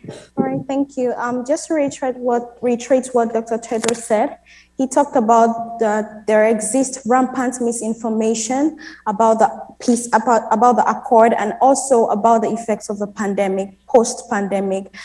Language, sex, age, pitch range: English, female, 20-39, 220-260 Hz